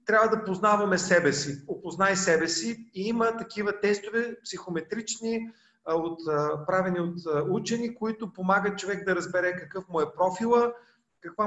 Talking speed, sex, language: 135 wpm, male, Bulgarian